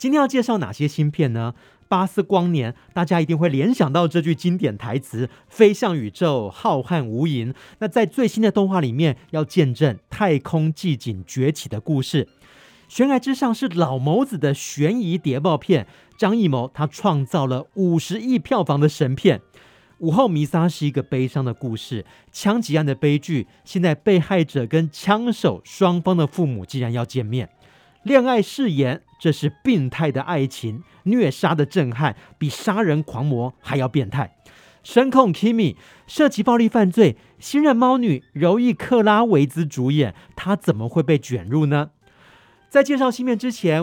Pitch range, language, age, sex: 135-195 Hz, Chinese, 40-59, male